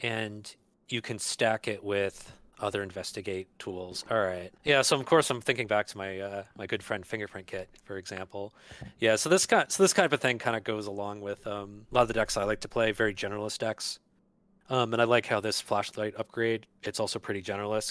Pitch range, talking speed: 105-150 Hz, 230 wpm